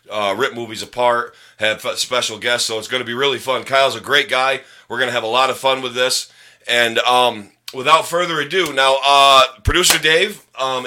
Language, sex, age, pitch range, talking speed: English, male, 40-59, 105-135 Hz, 215 wpm